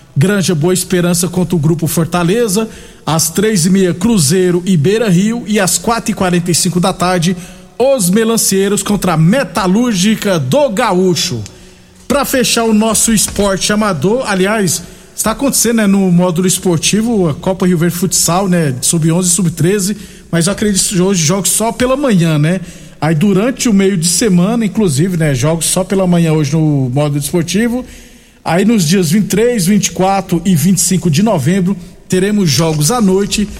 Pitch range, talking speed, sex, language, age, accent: 175-210 Hz, 165 wpm, male, Portuguese, 50-69, Brazilian